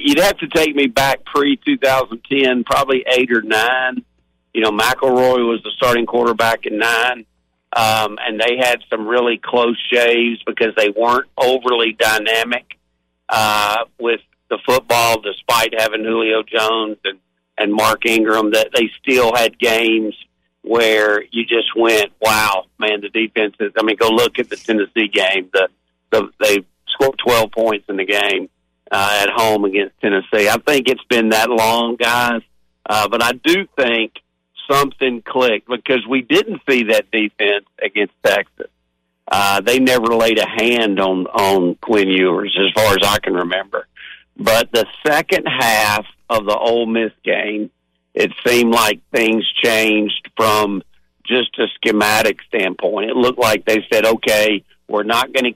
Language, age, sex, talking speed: English, 50-69, male, 160 wpm